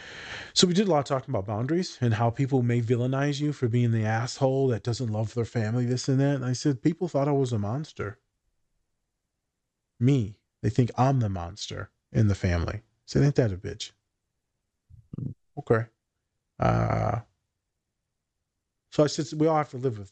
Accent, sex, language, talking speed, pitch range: American, male, English, 180 wpm, 110-135 Hz